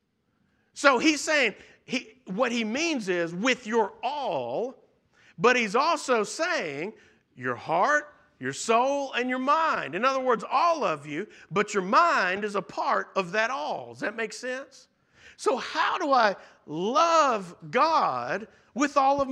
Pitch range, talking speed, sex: 210-295 Hz, 155 wpm, male